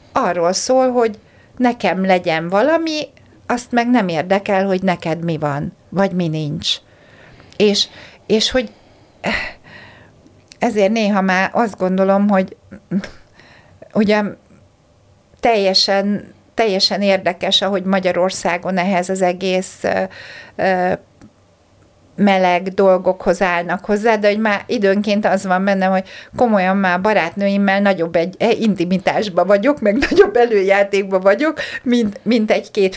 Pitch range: 180-220 Hz